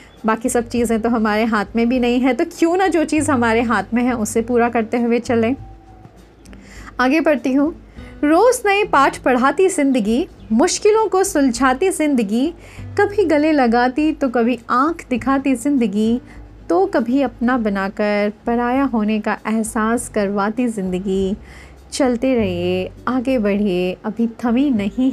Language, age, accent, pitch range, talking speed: Hindi, 30-49, native, 220-275 Hz, 145 wpm